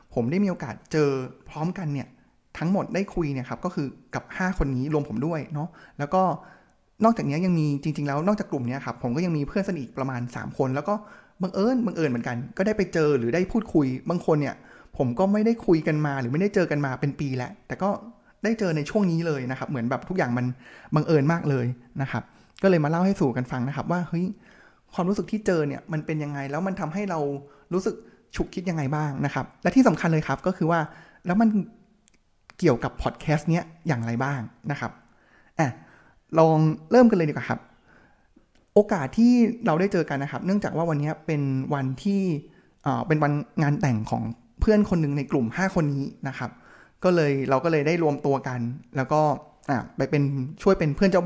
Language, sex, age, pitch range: Thai, male, 20-39, 140-185 Hz